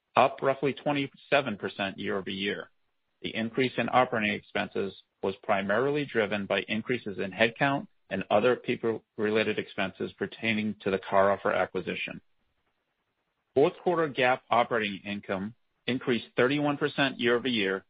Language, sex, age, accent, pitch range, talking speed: English, male, 40-59, American, 100-125 Hz, 110 wpm